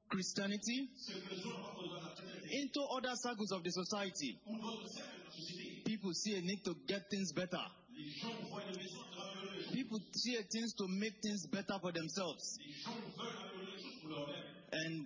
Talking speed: 105 wpm